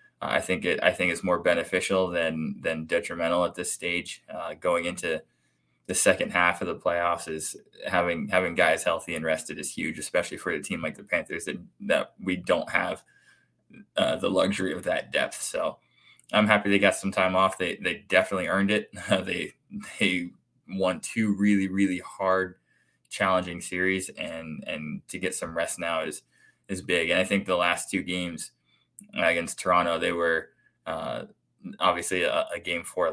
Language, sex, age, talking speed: English, male, 20-39, 180 wpm